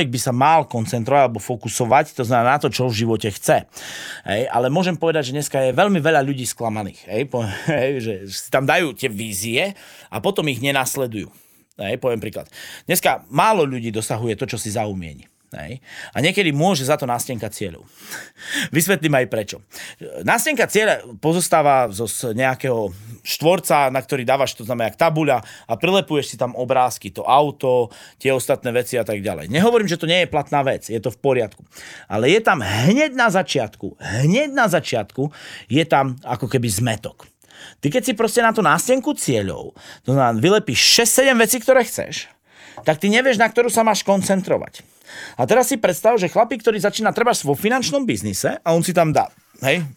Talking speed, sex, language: 180 wpm, male, Slovak